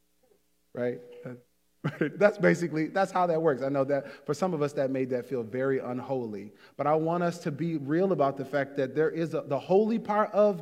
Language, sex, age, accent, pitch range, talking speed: English, male, 30-49, American, 125-180 Hz, 210 wpm